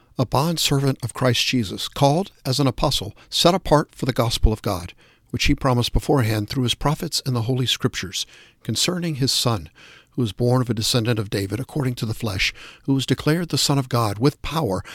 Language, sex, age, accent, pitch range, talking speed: English, male, 50-69, American, 115-145 Hz, 205 wpm